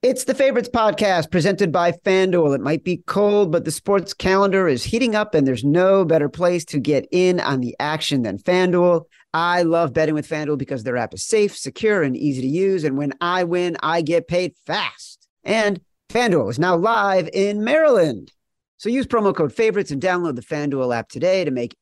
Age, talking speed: 40-59, 205 wpm